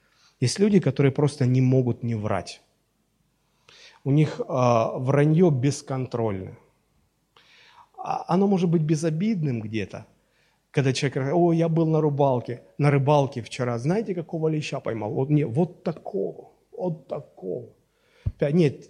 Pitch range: 120-165 Hz